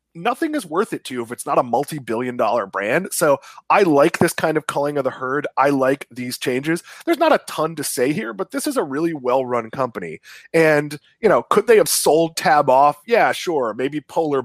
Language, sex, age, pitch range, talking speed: English, male, 20-39, 125-175 Hz, 220 wpm